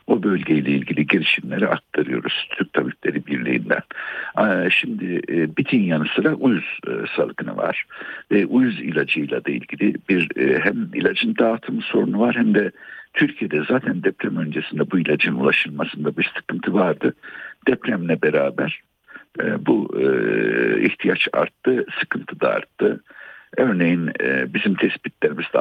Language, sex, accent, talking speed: Turkish, male, native, 110 wpm